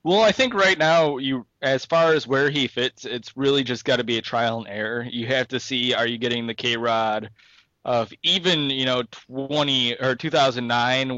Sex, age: male, 20-39